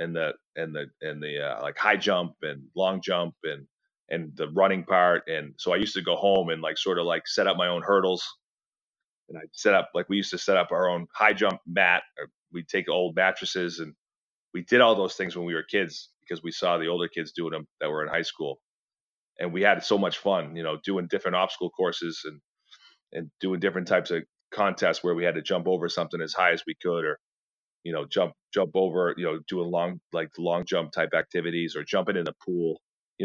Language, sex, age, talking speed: English, male, 30-49, 235 wpm